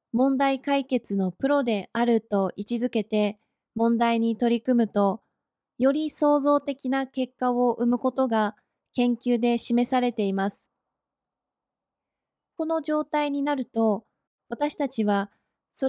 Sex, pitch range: female, 215-275 Hz